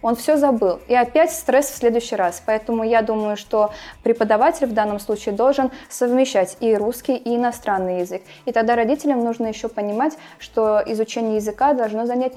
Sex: female